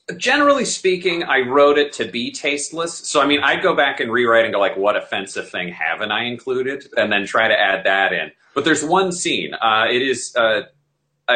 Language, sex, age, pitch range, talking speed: English, male, 30-49, 115-195 Hz, 210 wpm